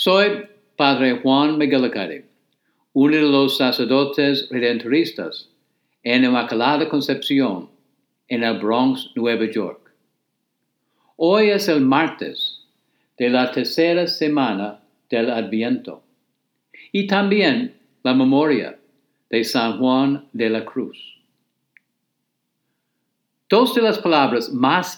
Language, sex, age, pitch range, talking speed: English, male, 60-79, 130-185 Hz, 105 wpm